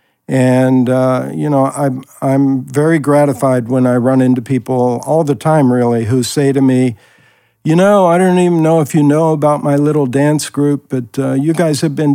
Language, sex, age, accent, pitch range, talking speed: English, male, 60-79, American, 125-150 Hz, 200 wpm